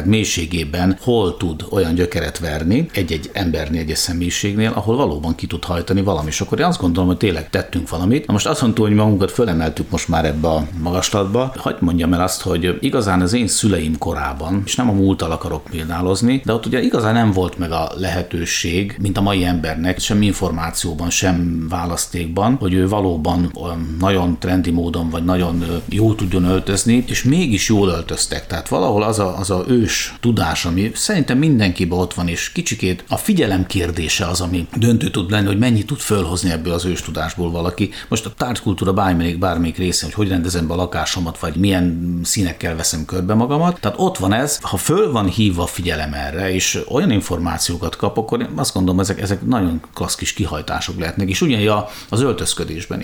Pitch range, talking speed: 85-105 Hz, 185 wpm